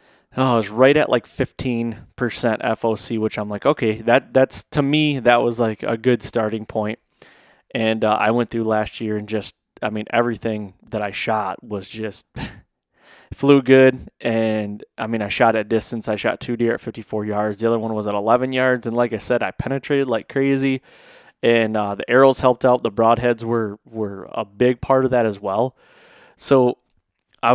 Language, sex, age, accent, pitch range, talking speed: English, male, 20-39, American, 110-125 Hz, 195 wpm